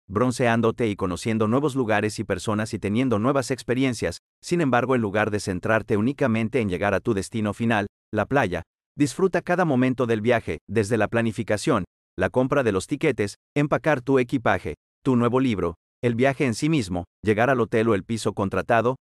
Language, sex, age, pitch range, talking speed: Spanish, male, 40-59, 100-130 Hz, 180 wpm